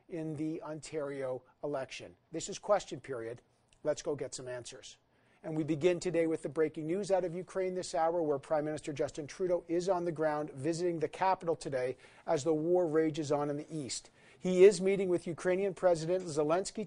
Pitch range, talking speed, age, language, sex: 150-185 Hz, 190 wpm, 50-69, English, male